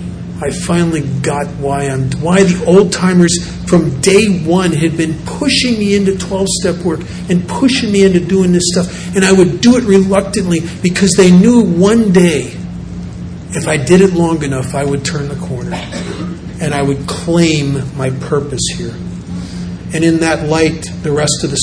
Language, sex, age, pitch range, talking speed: English, male, 40-59, 135-180 Hz, 175 wpm